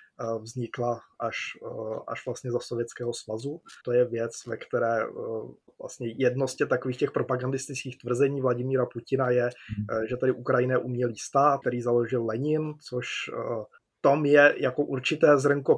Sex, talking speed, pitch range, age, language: male, 135 wpm, 120-135 Hz, 20-39, Czech